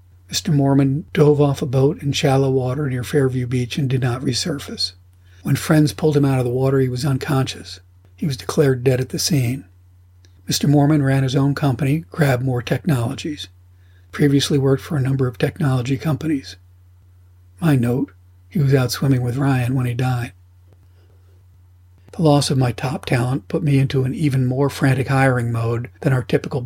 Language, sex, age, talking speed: English, male, 50-69, 180 wpm